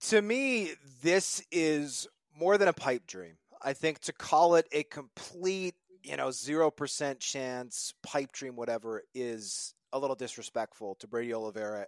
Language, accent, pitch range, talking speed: English, American, 120-155 Hz, 150 wpm